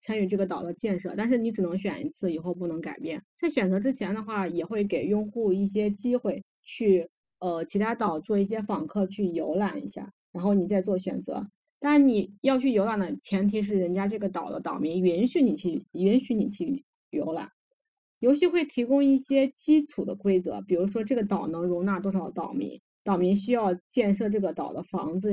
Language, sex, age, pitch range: Chinese, female, 20-39, 180-225 Hz